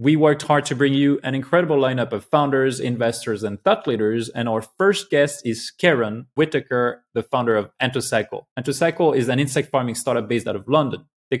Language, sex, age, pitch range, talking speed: English, male, 20-39, 115-155 Hz, 195 wpm